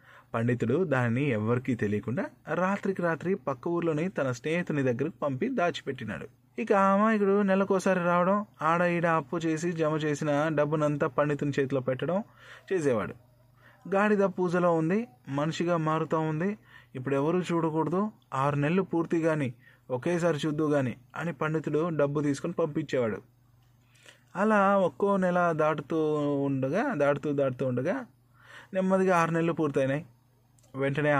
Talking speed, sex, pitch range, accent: 120 wpm, male, 125-175 Hz, native